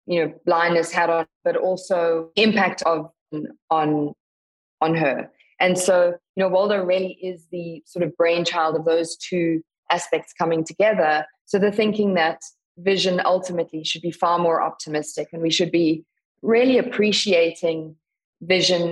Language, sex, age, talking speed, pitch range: English, female, 20-39, 150 wpm, 160-185 Hz